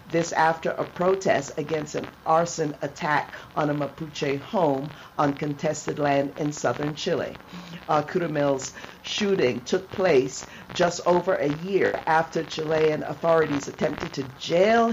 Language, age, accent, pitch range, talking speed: English, 50-69, American, 145-175 Hz, 135 wpm